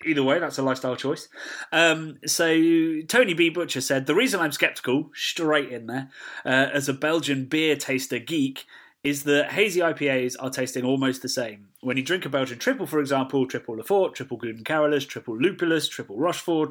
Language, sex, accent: English, male, British